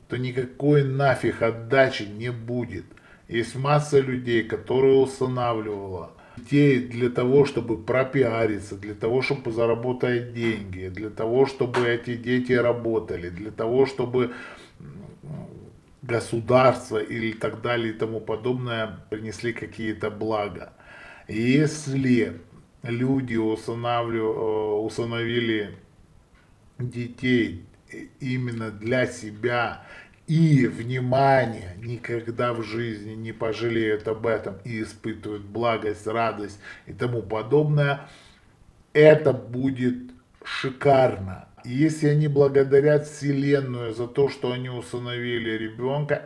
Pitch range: 110-130 Hz